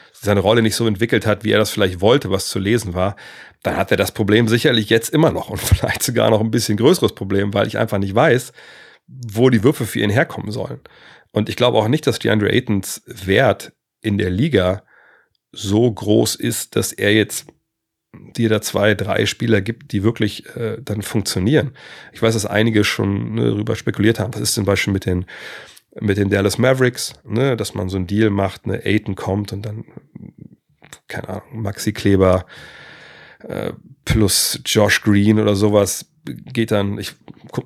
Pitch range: 100-115 Hz